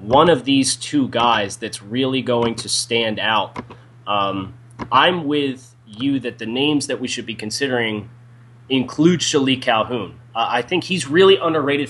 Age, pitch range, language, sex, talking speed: 30-49, 115-140 Hz, English, male, 160 wpm